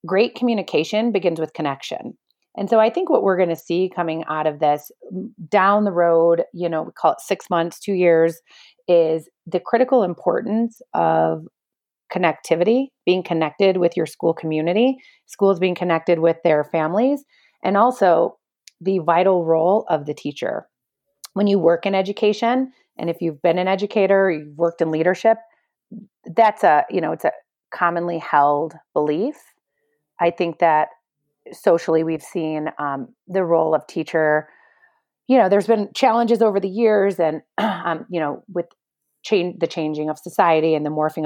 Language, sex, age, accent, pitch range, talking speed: English, female, 30-49, American, 165-210 Hz, 160 wpm